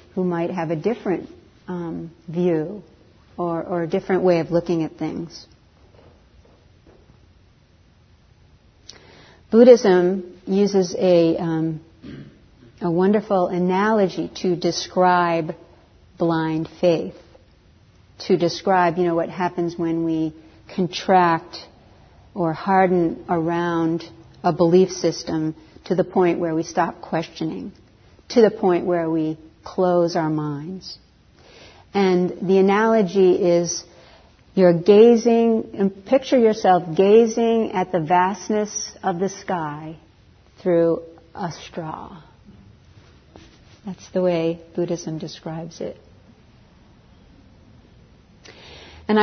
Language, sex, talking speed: English, female, 100 wpm